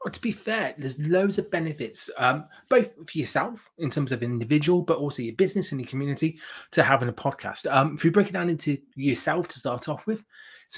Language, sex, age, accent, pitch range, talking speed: English, male, 30-49, British, 135-190 Hz, 225 wpm